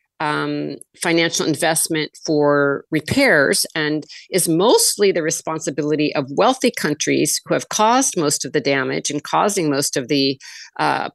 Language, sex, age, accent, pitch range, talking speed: English, female, 50-69, American, 150-180 Hz, 140 wpm